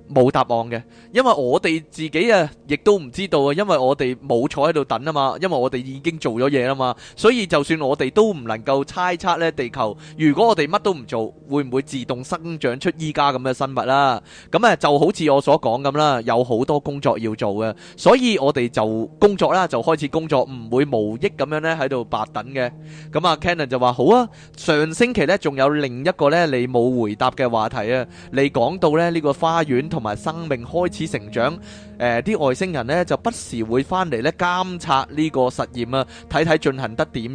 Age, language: 20-39, Chinese